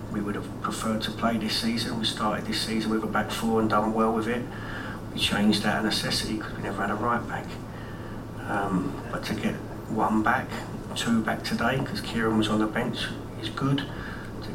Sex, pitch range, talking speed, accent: male, 105-115 Hz, 210 wpm, British